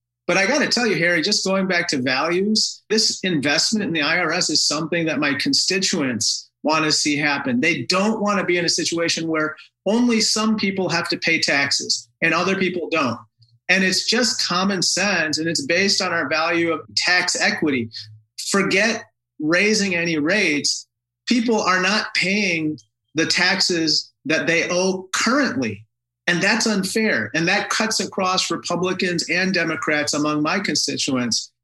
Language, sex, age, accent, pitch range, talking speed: English, male, 40-59, American, 155-190 Hz, 165 wpm